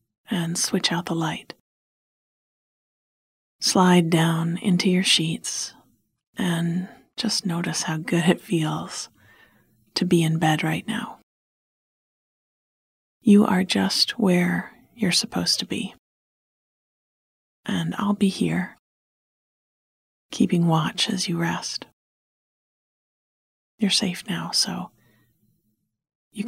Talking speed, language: 100 wpm, English